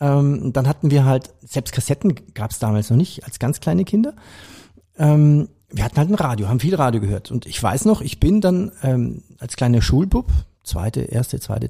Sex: male